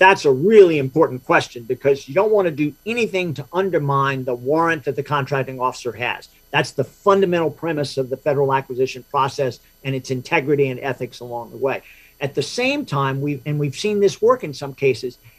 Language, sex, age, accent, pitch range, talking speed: English, male, 50-69, American, 135-170 Hz, 200 wpm